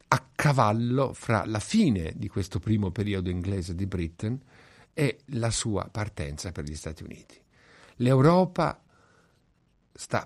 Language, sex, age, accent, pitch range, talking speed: Italian, male, 50-69, native, 105-135 Hz, 130 wpm